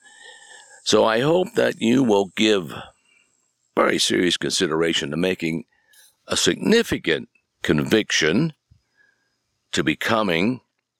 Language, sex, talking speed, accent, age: English, male, 95 wpm, American, 60-79